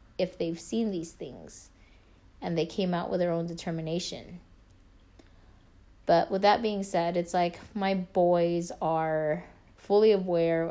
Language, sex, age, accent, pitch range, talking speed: English, female, 20-39, American, 145-180 Hz, 140 wpm